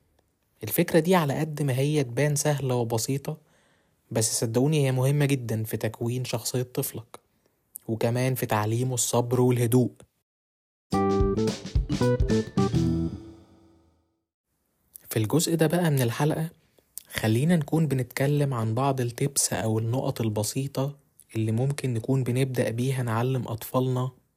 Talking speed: 110 wpm